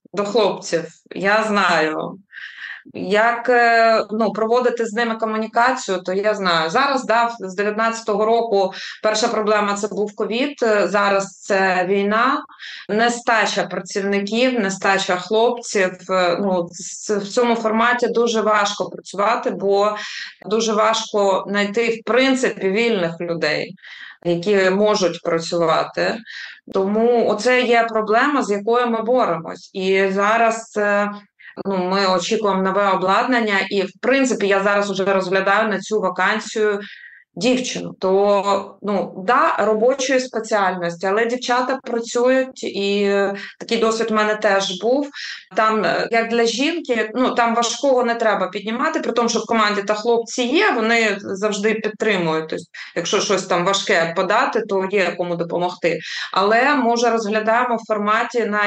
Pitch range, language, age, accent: 195-230 Hz, Ukrainian, 20-39, native